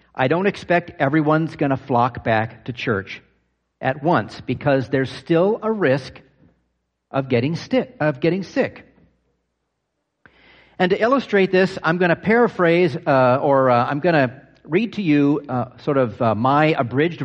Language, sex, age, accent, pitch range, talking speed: English, male, 50-69, American, 125-175 Hz, 150 wpm